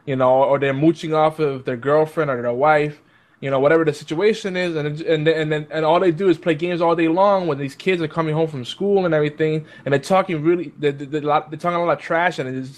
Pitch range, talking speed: 145-185 Hz, 255 wpm